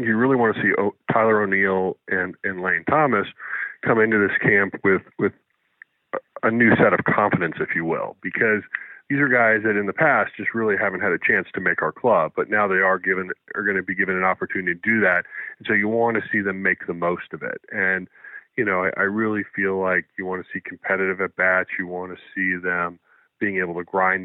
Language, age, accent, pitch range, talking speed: English, 40-59, American, 95-115 Hz, 235 wpm